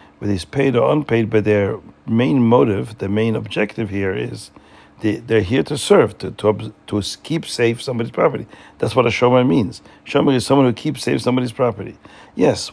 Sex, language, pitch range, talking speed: male, English, 100-125 Hz, 190 wpm